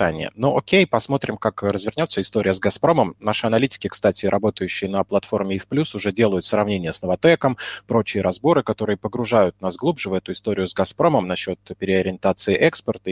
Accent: native